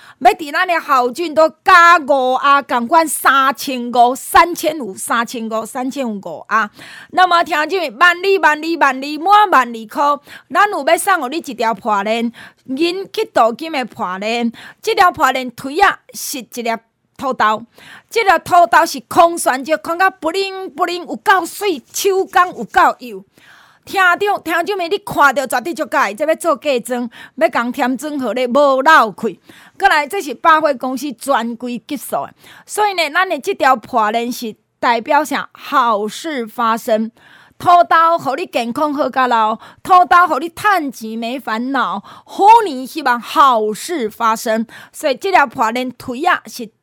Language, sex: Chinese, female